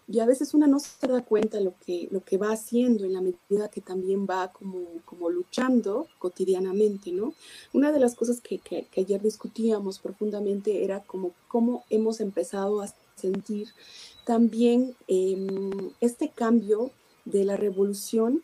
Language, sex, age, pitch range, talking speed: Spanish, female, 30-49, 190-235 Hz, 160 wpm